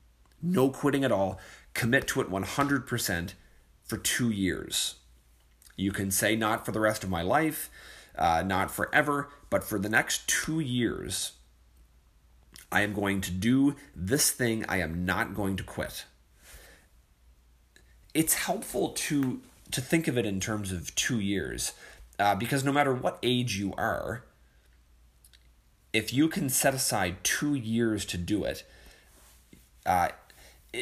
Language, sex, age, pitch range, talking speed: English, male, 30-49, 80-125 Hz, 145 wpm